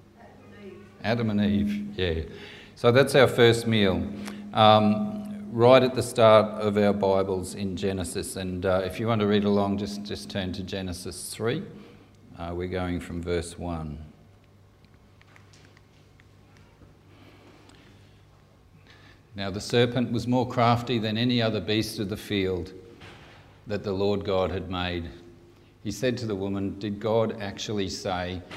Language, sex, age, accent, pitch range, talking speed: English, male, 50-69, Australian, 90-110 Hz, 140 wpm